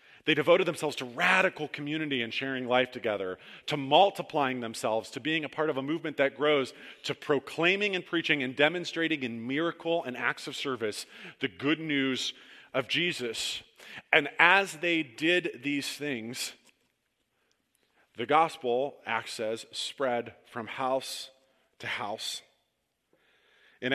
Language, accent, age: English, American, 40-59